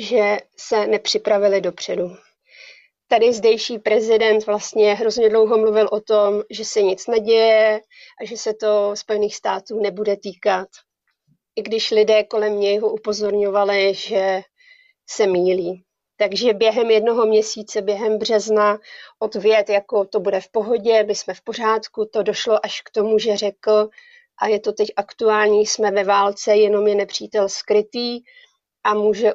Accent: native